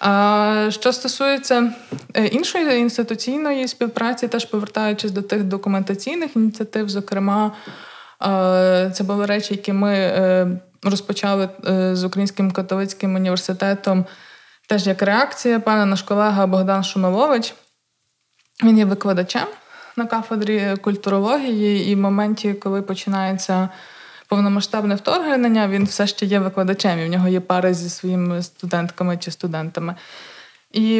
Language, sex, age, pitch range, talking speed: Ukrainian, female, 20-39, 190-220 Hz, 115 wpm